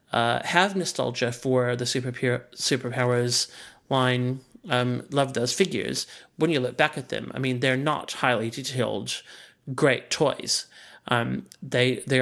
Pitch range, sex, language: 125-145 Hz, male, English